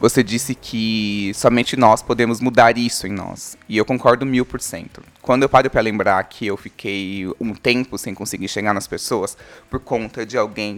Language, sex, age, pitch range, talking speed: Portuguese, male, 20-39, 110-150 Hz, 195 wpm